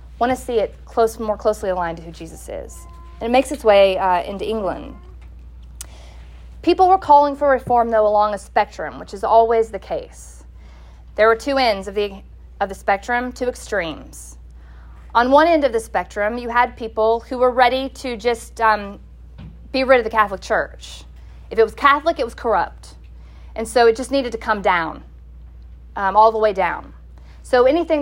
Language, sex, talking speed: English, female, 185 wpm